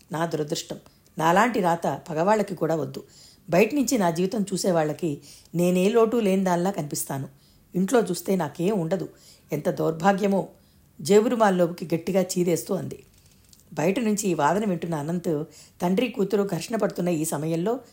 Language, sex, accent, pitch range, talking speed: Telugu, female, native, 165-210 Hz, 130 wpm